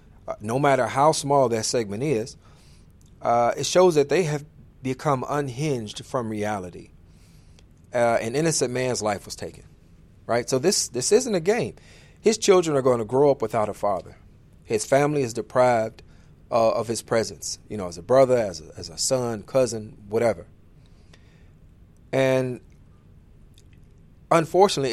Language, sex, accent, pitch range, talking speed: English, male, American, 105-135 Hz, 150 wpm